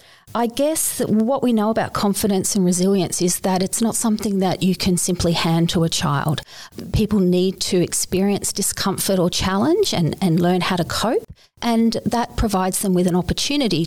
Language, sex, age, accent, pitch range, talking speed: English, female, 40-59, Australian, 170-205 Hz, 180 wpm